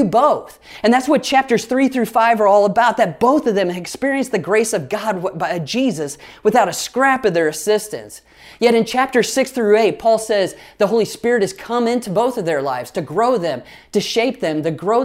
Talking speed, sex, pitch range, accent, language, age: 215 wpm, male, 175-235 Hz, American, English, 30-49